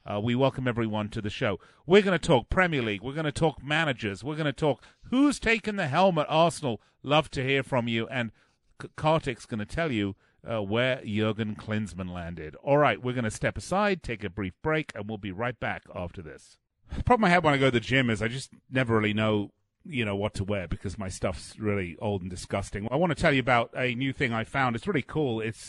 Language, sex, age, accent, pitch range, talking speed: English, male, 40-59, British, 105-145 Hz, 245 wpm